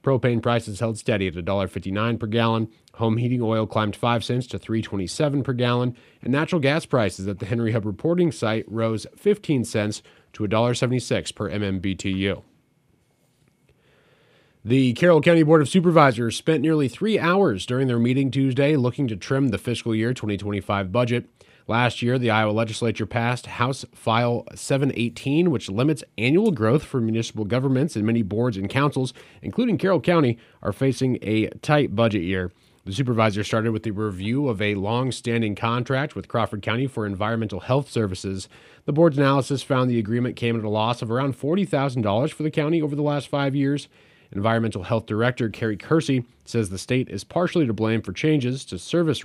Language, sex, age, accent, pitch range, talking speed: English, male, 30-49, American, 110-180 Hz, 170 wpm